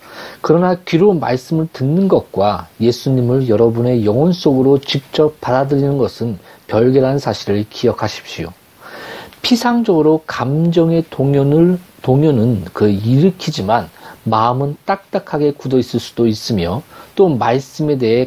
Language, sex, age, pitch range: Korean, male, 40-59, 115-160 Hz